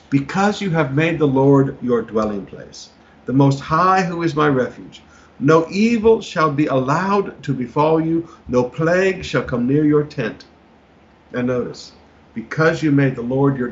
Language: English